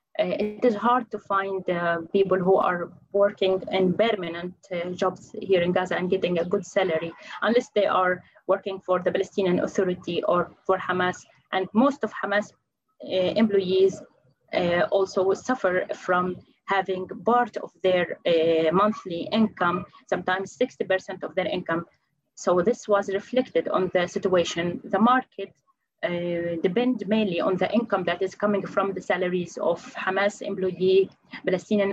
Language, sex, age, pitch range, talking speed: English, female, 20-39, 180-215 Hz, 155 wpm